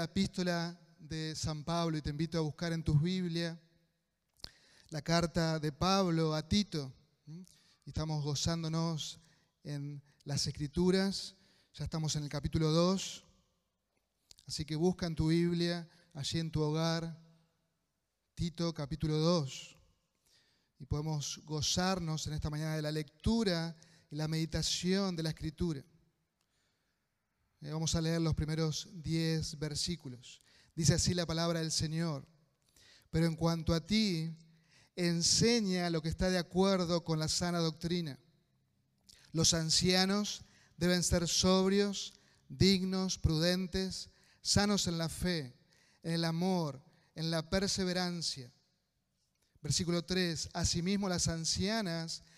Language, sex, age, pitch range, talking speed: Spanish, male, 30-49, 155-175 Hz, 125 wpm